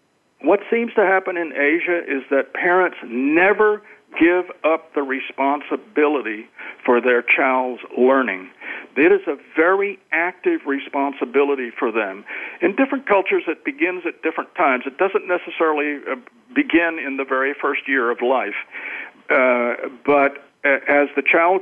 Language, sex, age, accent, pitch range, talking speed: English, male, 60-79, American, 130-180 Hz, 140 wpm